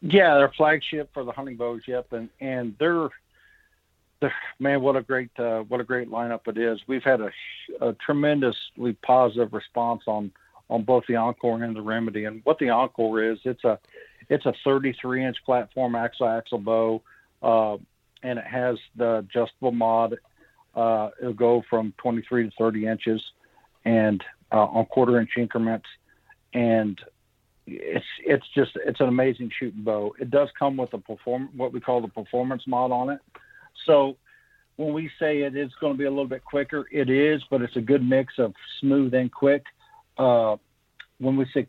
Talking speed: 180 wpm